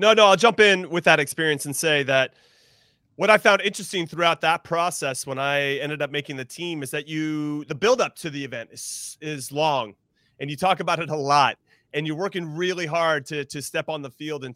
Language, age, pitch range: English, 30-49, 145-195 Hz